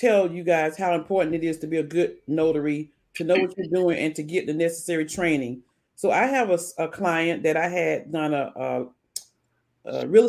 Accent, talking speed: American, 215 wpm